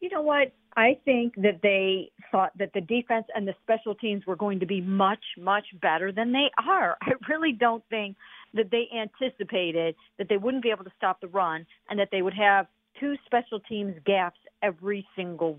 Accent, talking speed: American, 200 wpm